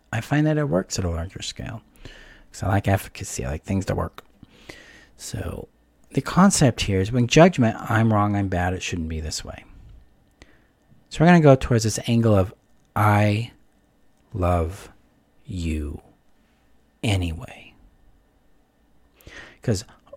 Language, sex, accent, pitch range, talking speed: English, male, American, 95-120 Hz, 145 wpm